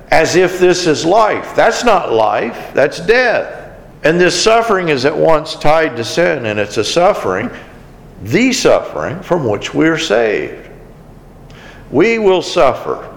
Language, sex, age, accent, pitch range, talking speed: English, male, 50-69, American, 130-180 Hz, 150 wpm